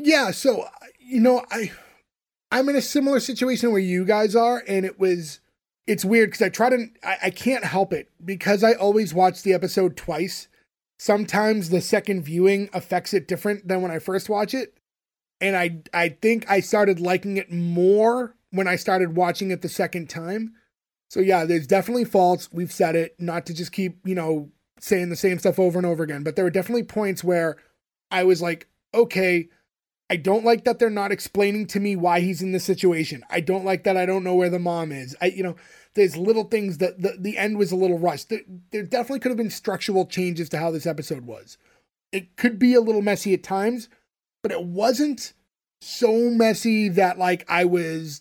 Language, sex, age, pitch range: English, male, 20-39, 175-210 Hz